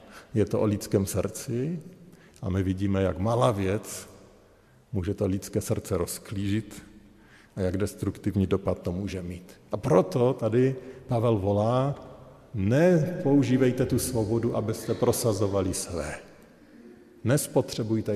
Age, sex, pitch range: 50-69, male, 95-130 Hz